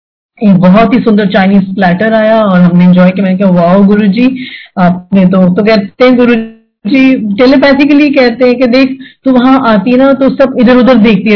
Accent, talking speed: native, 190 wpm